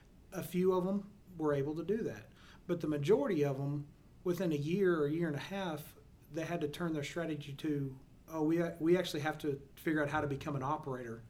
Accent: American